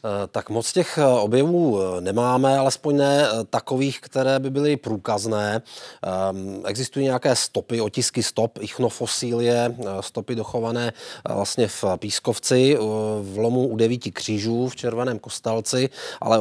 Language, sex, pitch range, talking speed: Czech, male, 110-125 Hz, 115 wpm